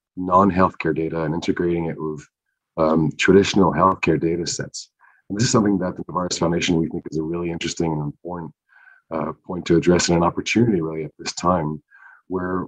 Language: English